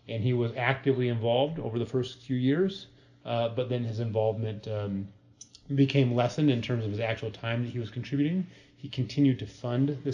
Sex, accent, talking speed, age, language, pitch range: male, American, 195 wpm, 30-49, English, 110-130 Hz